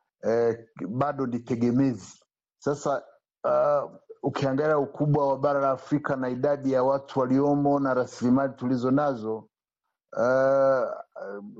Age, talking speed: 50-69, 110 wpm